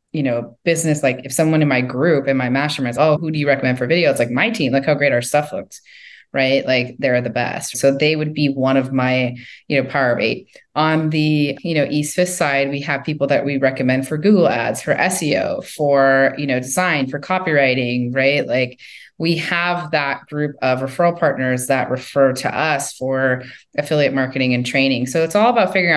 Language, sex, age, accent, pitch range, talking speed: English, female, 20-39, American, 135-155 Hz, 215 wpm